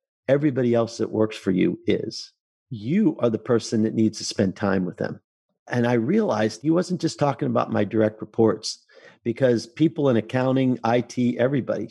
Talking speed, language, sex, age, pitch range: 175 wpm, English, male, 50-69, 115-150 Hz